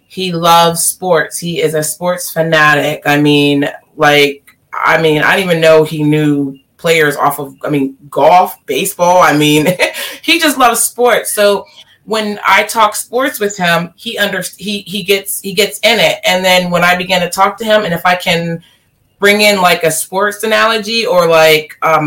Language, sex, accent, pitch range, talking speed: English, female, American, 165-205 Hz, 195 wpm